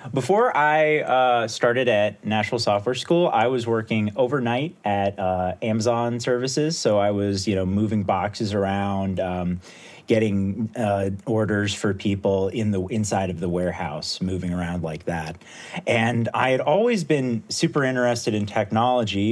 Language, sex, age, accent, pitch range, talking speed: English, male, 30-49, American, 95-115 Hz, 150 wpm